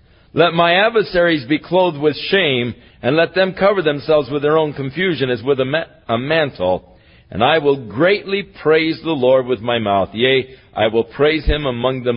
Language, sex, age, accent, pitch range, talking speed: English, male, 50-69, American, 105-165 Hz, 185 wpm